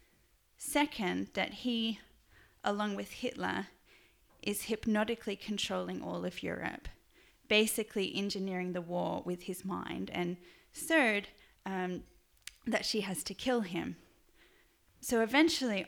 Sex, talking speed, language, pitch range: female, 115 wpm, English, 180-215 Hz